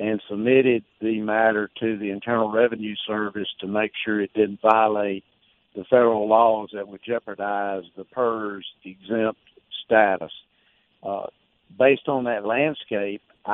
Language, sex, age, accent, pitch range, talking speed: English, male, 60-79, American, 100-115 Hz, 130 wpm